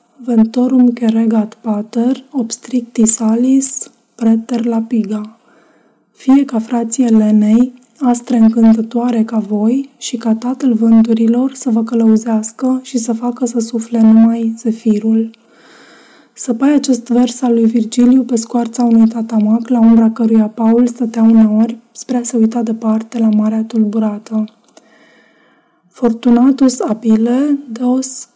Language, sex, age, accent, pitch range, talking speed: Romanian, female, 20-39, native, 225-245 Hz, 120 wpm